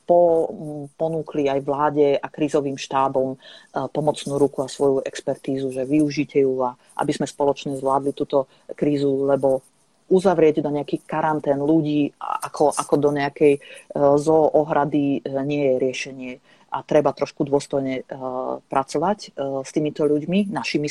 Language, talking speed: Slovak, 125 wpm